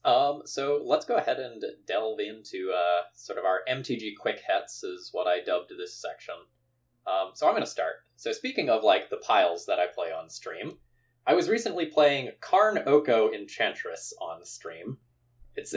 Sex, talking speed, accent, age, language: male, 185 wpm, American, 20-39, English